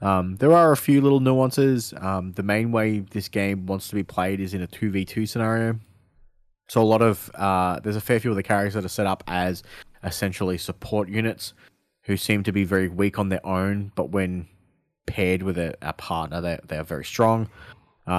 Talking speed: 220 wpm